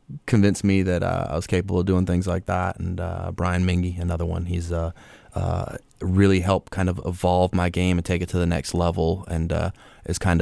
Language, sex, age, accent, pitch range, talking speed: English, male, 20-39, American, 85-90 Hz, 220 wpm